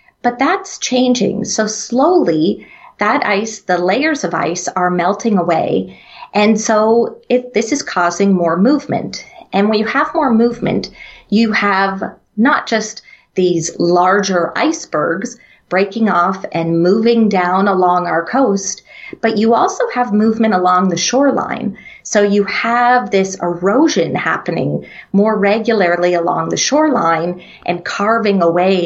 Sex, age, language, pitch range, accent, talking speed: female, 30-49, English, 185-240 Hz, American, 135 wpm